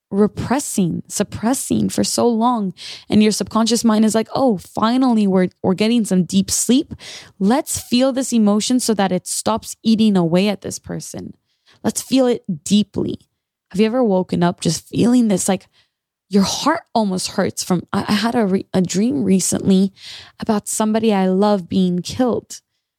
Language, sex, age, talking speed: English, female, 20-39, 160 wpm